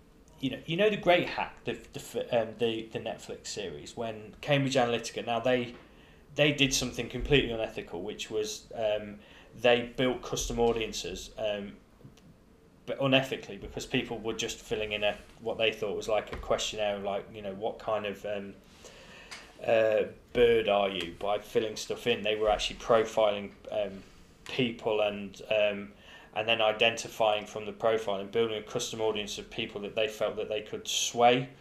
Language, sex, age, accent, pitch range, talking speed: English, male, 10-29, British, 105-130 Hz, 175 wpm